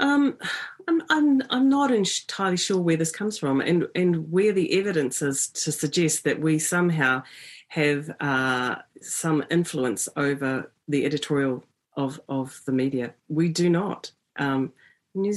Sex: female